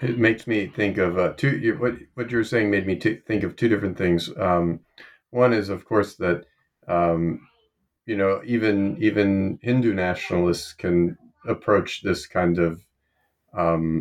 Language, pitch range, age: English, 85-110 Hz, 40-59